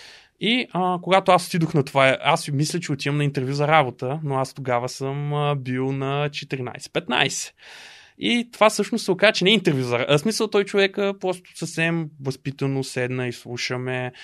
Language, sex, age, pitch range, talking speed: Bulgarian, male, 20-39, 130-185 Hz, 185 wpm